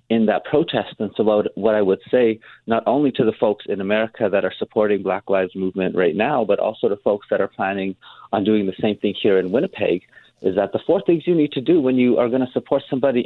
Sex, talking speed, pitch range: male, 250 wpm, 95-125 Hz